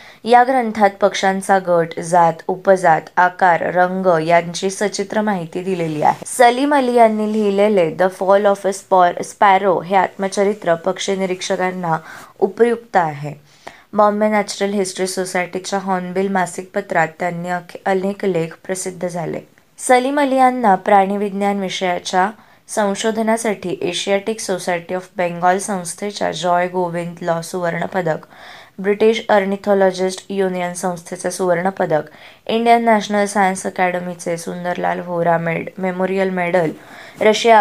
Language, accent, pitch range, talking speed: Marathi, native, 180-200 Hz, 75 wpm